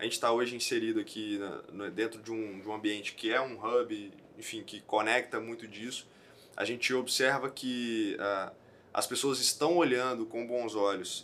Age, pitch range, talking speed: 20-39, 110-150 Hz, 160 wpm